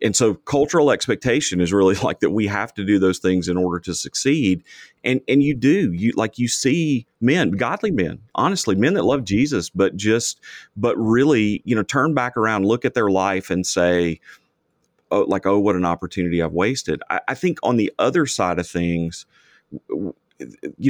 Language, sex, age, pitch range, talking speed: English, male, 30-49, 90-120 Hz, 190 wpm